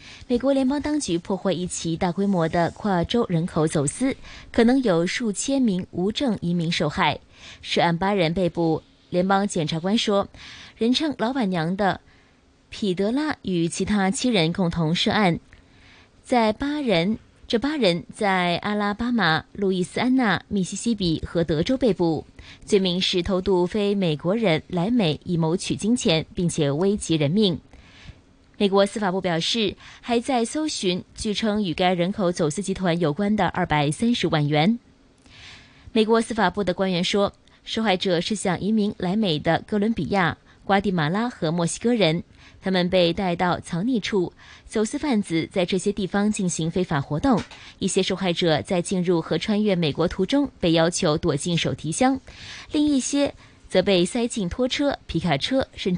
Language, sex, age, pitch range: Chinese, female, 20-39, 170-215 Hz